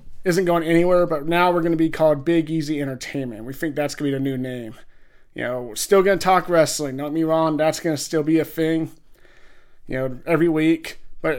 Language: English